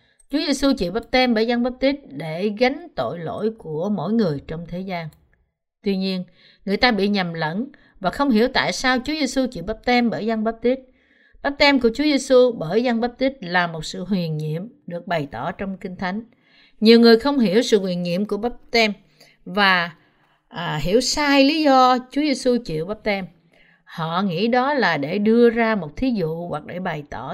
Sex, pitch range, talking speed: female, 180-245 Hz, 190 wpm